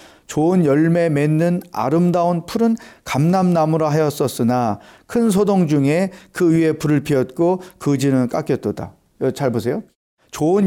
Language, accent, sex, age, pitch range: Korean, native, male, 40-59, 135-180 Hz